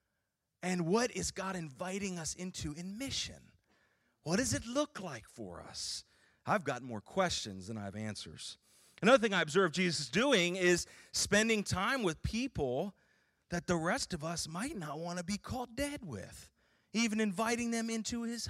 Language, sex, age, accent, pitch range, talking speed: English, male, 30-49, American, 155-225 Hz, 170 wpm